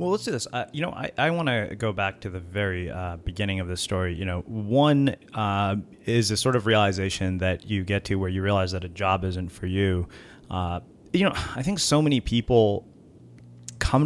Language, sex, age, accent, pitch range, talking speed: English, male, 30-49, American, 95-115 Hz, 220 wpm